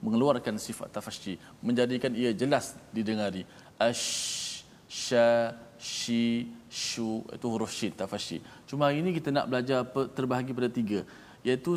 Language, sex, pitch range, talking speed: Malayalam, male, 115-155 Hz, 135 wpm